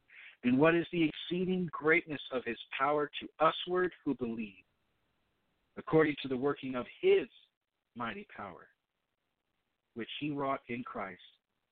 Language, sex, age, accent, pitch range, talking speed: English, male, 50-69, American, 130-165 Hz, 135 wpm